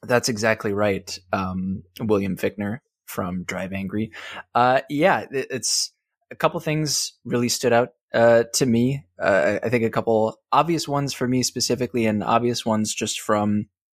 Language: English